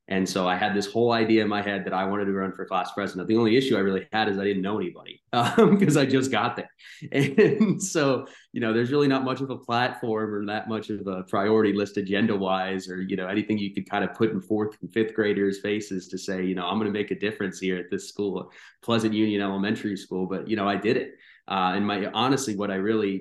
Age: 30-49